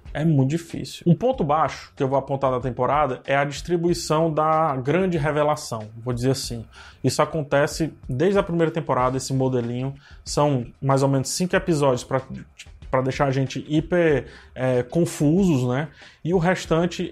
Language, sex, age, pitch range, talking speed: Portuguese, male, 20-39, 135-165 Hz, 165 wpm